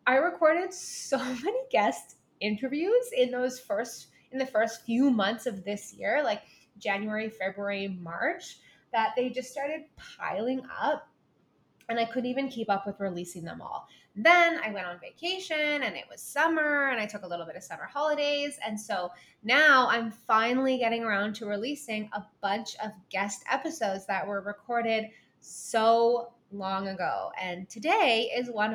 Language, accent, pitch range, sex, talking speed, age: English, American, 195-265 Hz, female, 165 wpm, 20-39